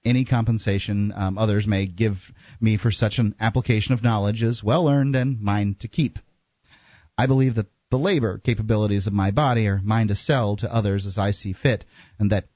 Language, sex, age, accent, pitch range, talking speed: English, male, 30-49, American, 100-120 Hz, 190 wpm